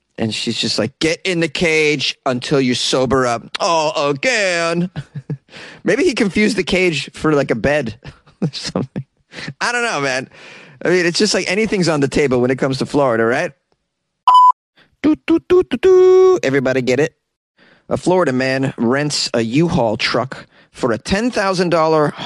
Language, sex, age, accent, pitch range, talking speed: English, male, 30-49, American, 130-185 Hz, 155 wpm